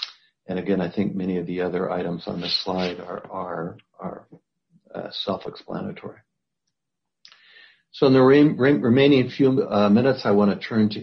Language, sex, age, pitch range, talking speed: English, male, 60-79, 95-105 Hz, 170 wpm